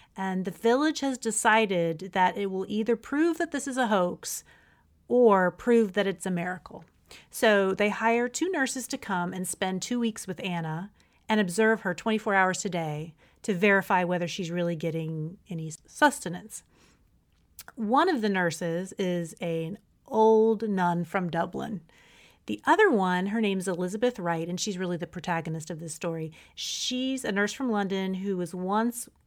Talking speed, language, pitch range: 170 wpm, English, 175-225 Hz